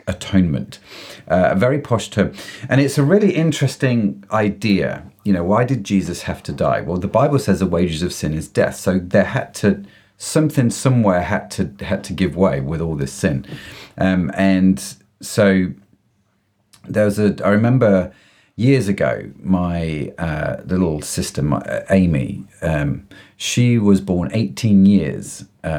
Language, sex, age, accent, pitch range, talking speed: English, male, 40-59, British, 95-110 Hz, 155 wpm